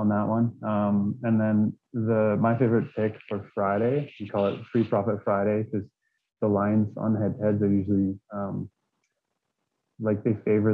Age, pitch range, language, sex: 20-39, 100-110 Hz, English, male